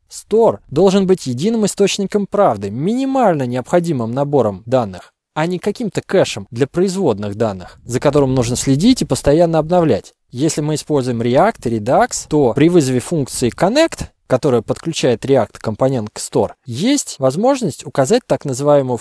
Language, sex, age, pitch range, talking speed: Russian, male, 20-39, 130-200 Hz, 145 wpm